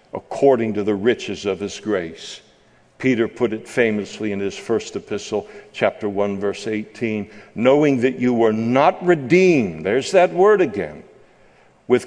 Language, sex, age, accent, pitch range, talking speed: English, male, 60-79, American, 120-160 Hz, 150 wpm